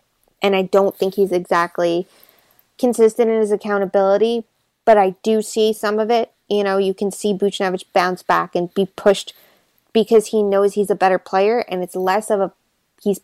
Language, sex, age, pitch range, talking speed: English, female, 20-39, 180-205 Hz, 185 wpm